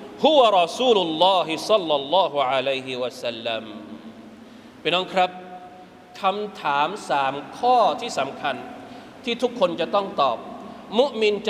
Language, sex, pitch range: Thai, male, 185-250 Hz